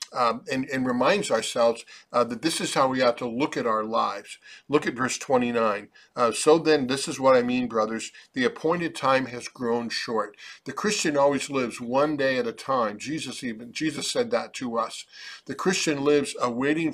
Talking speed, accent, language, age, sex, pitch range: 200 wpm, American, English, 50-69, male, 120-145 Hz